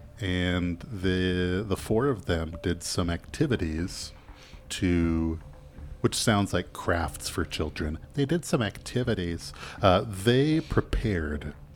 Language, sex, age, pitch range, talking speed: English, male, 40-59, 75-105 Hz, 115 wpm